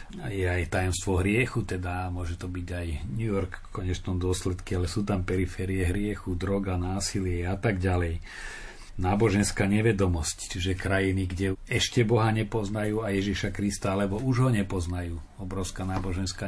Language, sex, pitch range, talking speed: Slovak, male, 90-100 Hz, 155 wpm